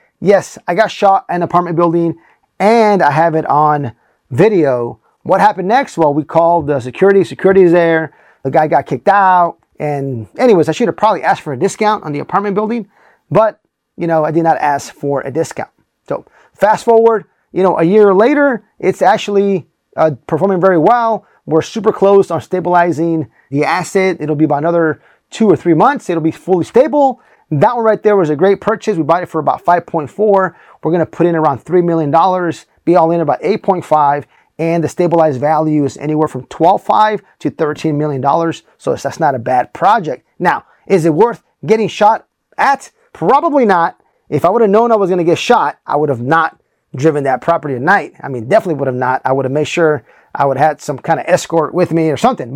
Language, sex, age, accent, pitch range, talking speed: English, male, 30-49, American, 155-195 Hz, 210 wpm